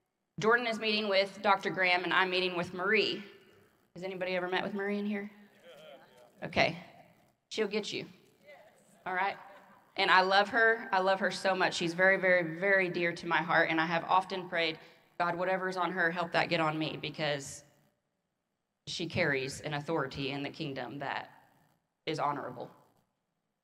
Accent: American